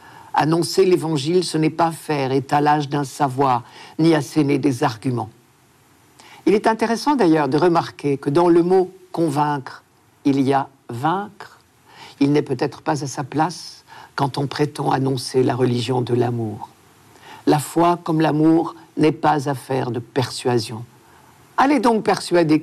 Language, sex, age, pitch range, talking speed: French, male, 60-79, 125-165 Hz, 145 wpm